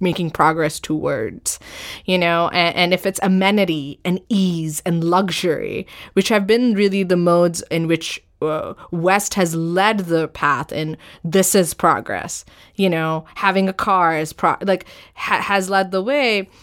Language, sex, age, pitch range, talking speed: English, female, 20-39, 160-195 Hz, 155 wpm